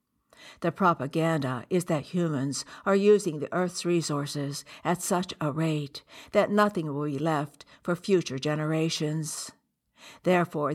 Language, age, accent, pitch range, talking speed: English, 60-79, American, 145-175 Hz, 130 wpm